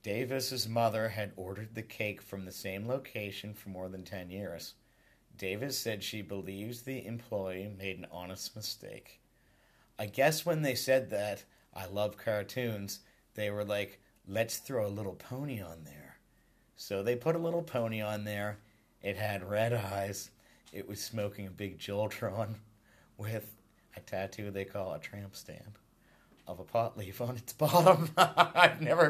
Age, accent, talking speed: 50-69, American, 165 wpm